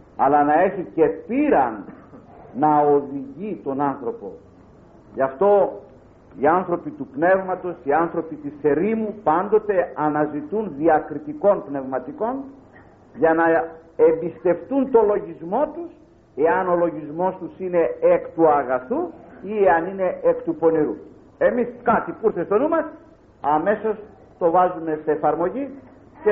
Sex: male